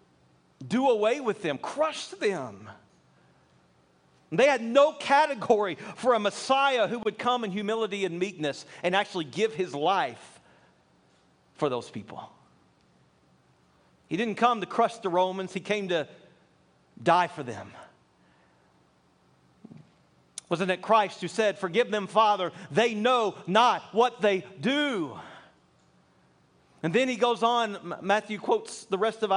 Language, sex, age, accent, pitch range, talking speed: English, male, 40-59, American, 185-225 Hz, 135 wpm